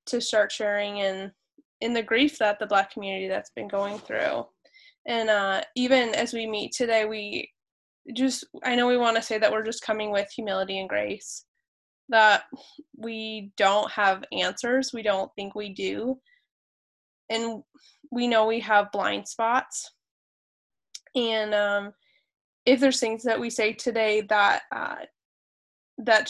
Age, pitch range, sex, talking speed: 10-29, 205-240 Hz, female, 155 wpm